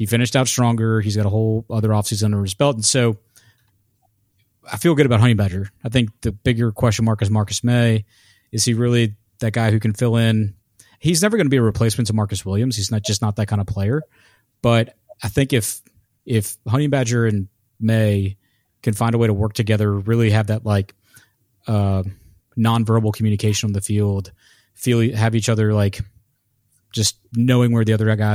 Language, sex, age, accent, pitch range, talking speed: English, male, 30-49, American, 105-115 Hz, 200 wpm